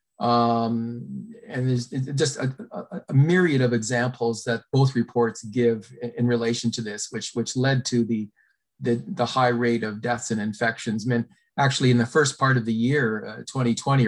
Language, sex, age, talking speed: English, male, 40-59, 190 wpm